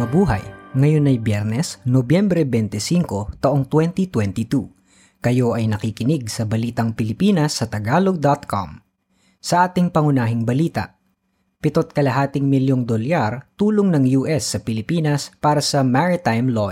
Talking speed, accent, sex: 120 wpm, native, female